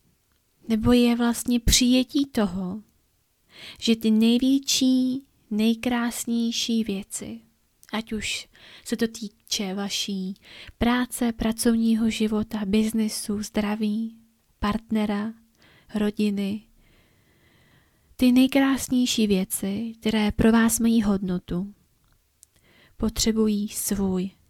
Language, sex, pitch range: Czech, female, 205-235 Hz